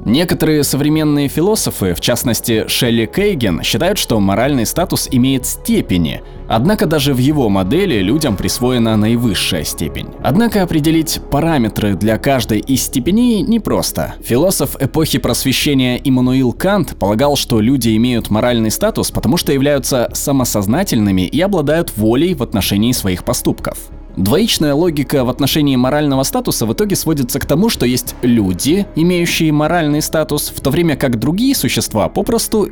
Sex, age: male, 20-39